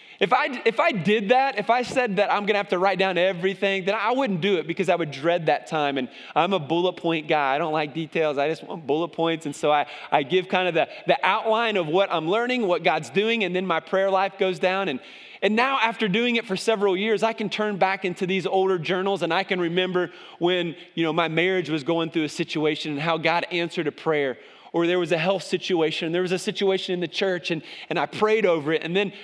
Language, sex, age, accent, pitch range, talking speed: English, male, 30-49, American, 170-220 Hz, 260 wpm